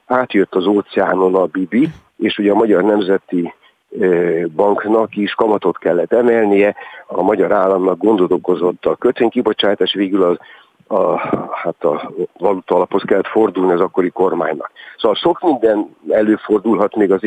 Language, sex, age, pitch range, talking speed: Hungarian, male, 50-69, 100-135 Hz, 135 wpm